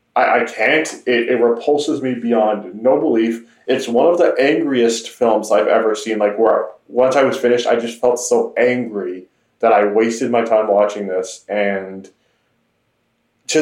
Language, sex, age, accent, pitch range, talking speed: English, male, 20-39, American, 105-125 Hz, 165 wpm